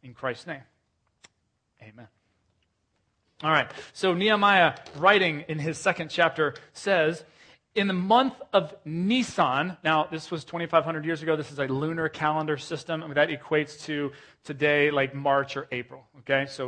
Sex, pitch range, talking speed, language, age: male, 145-195 Hz, 155 wpm, English, 30-49